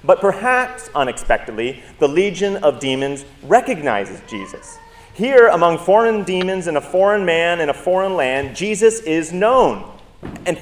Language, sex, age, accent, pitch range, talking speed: English, male, 30-49, American, 145-210 Hz, 140 wpm